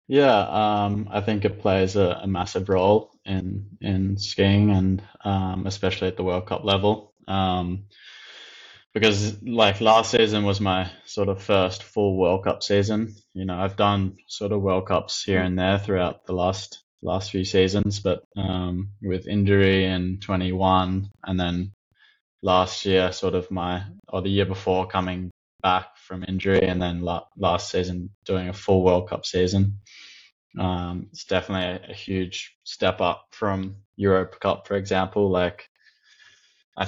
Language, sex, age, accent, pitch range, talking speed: English, male, 20-39, Australian, 90-100 Hz, 165 wpm